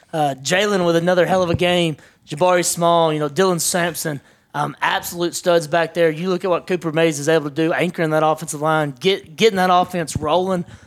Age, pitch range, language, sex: 20-39, 165-195 Hz, English, male